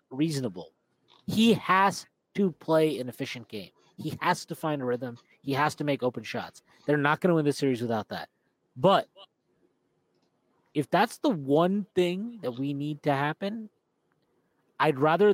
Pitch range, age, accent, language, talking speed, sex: 125-170 Hz, 30-49, American, English, 165 wpm, male